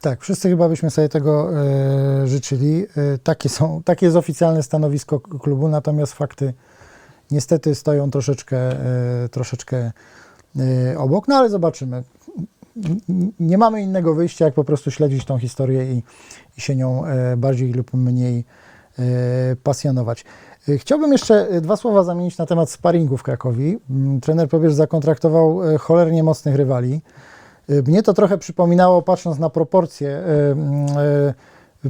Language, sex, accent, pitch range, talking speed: Polish, male, native, 140-165 Hz, 120 wpm